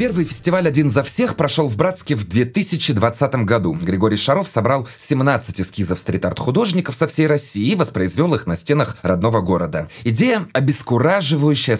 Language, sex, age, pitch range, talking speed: Russian, male, 20-39, 95-140 Hz, 155 wpm